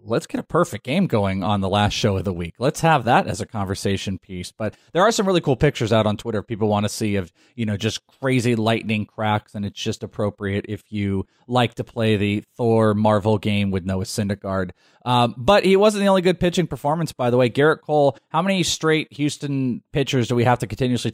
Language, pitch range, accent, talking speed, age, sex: English, 105-135 Hz, American, 230 wpm, 30-49, male